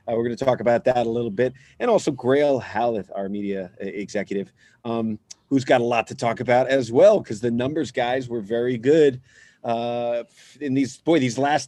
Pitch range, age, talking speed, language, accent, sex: 110-135 Hz, 40-59, 210 wpm, English, American, male